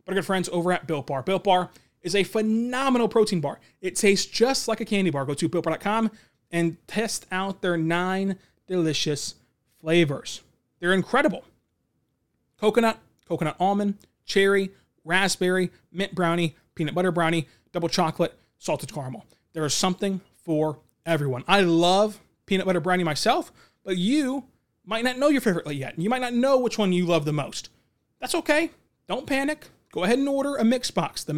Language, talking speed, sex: English, 165 wpm, male